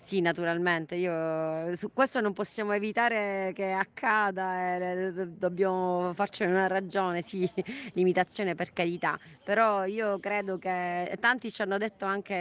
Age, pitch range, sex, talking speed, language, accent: 30-49, 175-195 Hz, female, 135 wpm, Italian, native